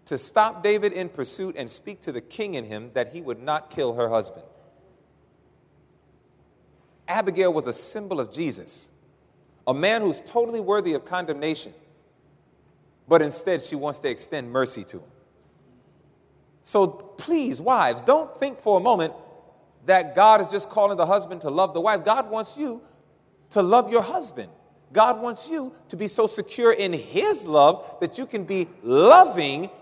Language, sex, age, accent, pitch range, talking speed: English, male, 30-49, American, 150-215 Hz, 165 wpm